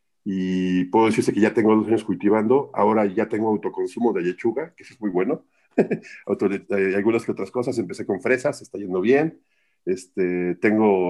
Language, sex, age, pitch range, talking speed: Spanish, male, 50-69, 100-125 Hz, 175 wpm